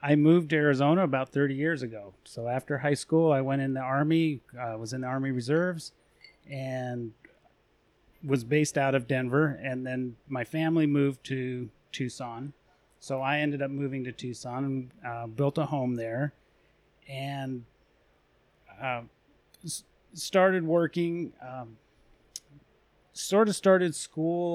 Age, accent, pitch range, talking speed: 30-49, American, 125-145 Hz, 145 wpm